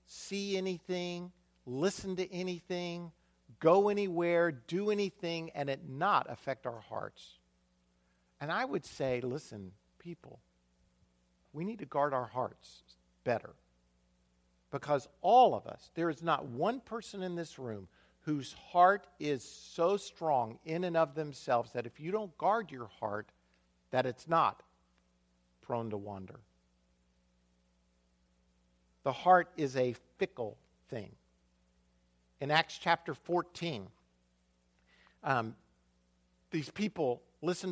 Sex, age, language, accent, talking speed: male, 50-69, English, American, 120 wpm